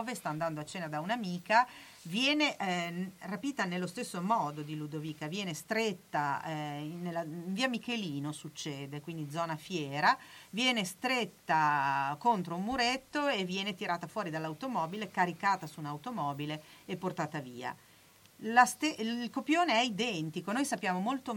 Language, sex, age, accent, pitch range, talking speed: Italian, female, 40-59, native, 160-215 Hz, 140 wpm